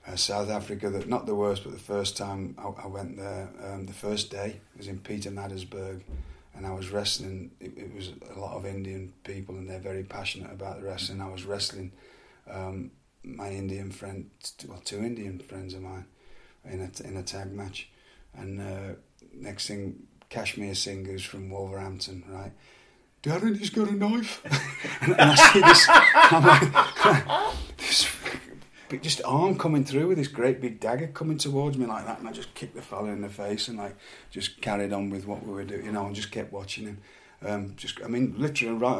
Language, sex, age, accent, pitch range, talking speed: English, male, 30-49, British, 95-105 Hz, 200 wpm